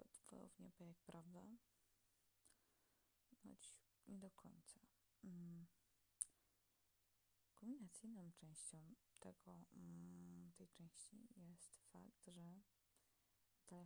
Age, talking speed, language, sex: 20-39, 80 wpm, Polish, female